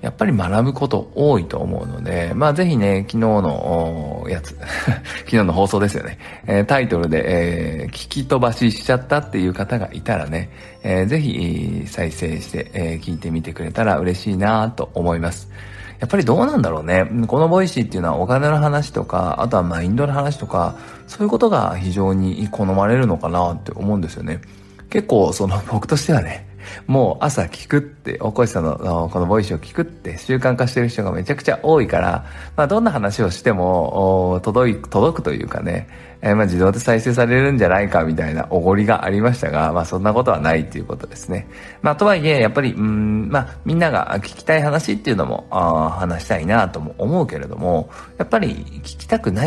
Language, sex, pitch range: Japanese, male, 85-125 Hz